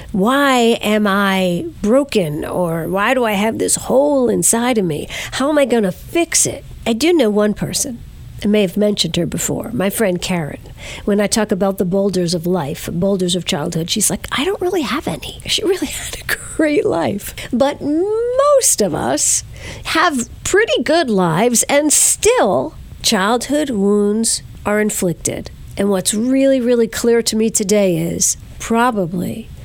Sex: female